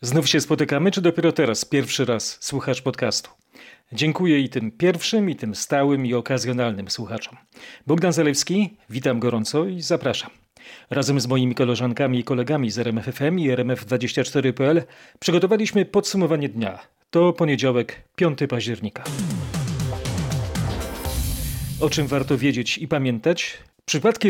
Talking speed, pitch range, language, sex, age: 125 wpm, 125-160 Hz, Polish, male, 40-59